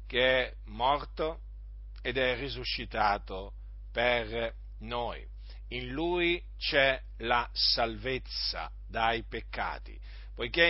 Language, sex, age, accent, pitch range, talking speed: Italian, male, 50-69, native, 110-155 Hz, 90 wpm